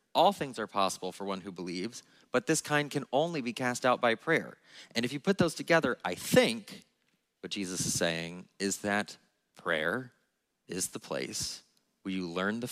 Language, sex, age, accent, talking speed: English, male, 30-49, American, 190 wpm